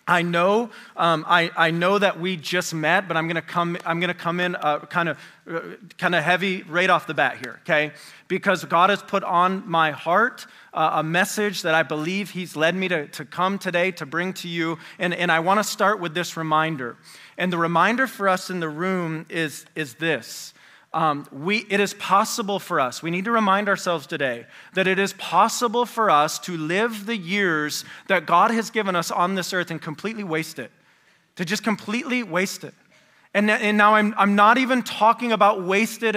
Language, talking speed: English, 200 wpm